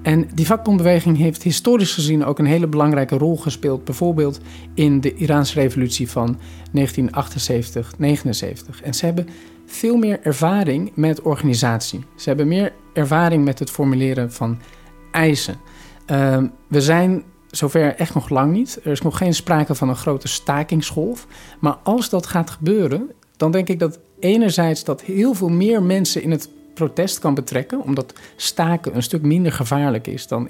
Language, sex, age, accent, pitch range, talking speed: Dutch, male, 50-69, Dutch, 135-175 Hz, 160 wpm